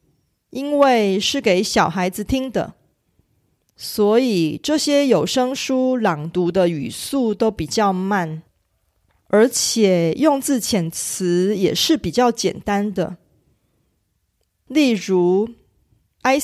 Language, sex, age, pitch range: Korean, female, 30-49, 180-260 Hz